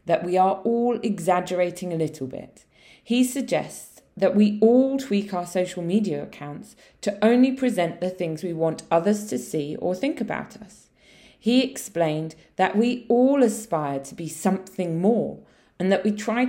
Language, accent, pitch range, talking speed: English, British, 165-225 Hz, 165 wpm